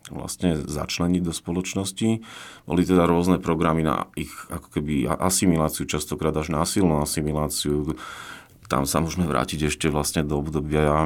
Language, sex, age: Slovak, male, 40-59